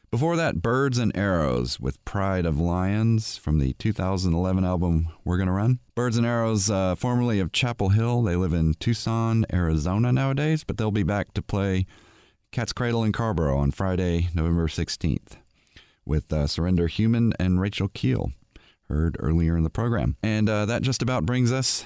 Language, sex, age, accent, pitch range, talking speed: English, male, 40-59, American, 90-120 Hz, 175 wpm